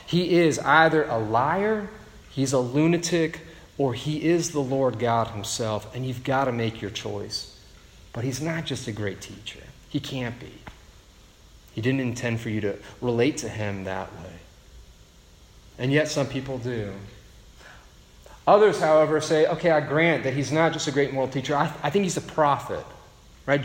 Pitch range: 115-160 Hz